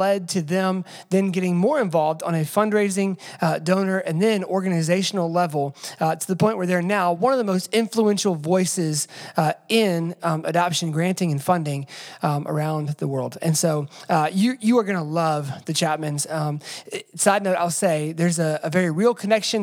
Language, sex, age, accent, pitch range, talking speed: English, male, 20-39, American, 155-195 Hz, 195 wpm